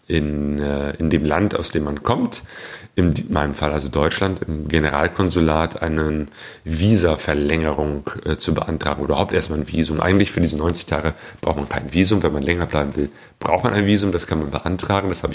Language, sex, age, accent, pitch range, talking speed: German, male, 40-59, German, 75-95 Hz, 195 wpm